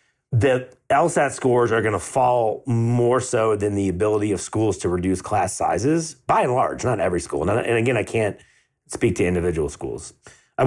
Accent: American